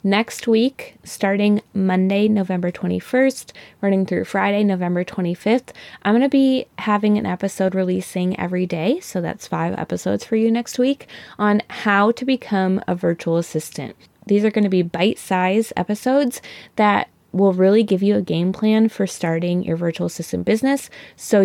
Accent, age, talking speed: American, 20-39, 155 wpm